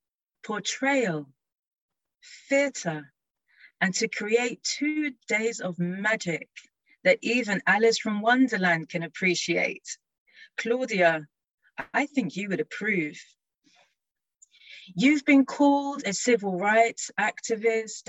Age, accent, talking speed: 30-49, British, 95 wpm